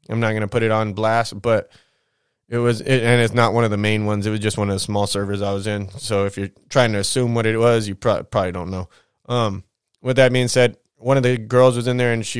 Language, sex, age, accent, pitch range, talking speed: English, male, 20-39, American, 105-125 Hz, 275 wpm